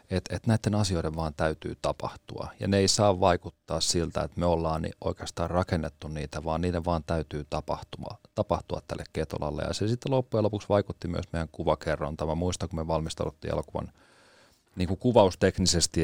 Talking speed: 155 wpm